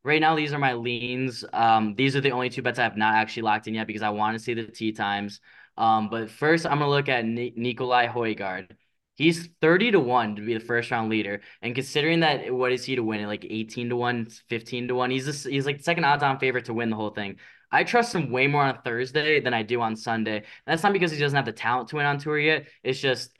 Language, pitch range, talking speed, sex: English, 110-130 Hz, 270 wpm, male